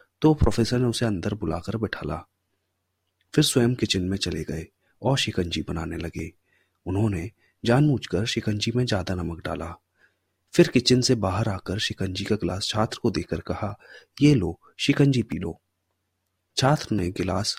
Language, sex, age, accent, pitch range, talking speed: Hindi, male, 30-49, native, 90-125 Hz, 120 wpm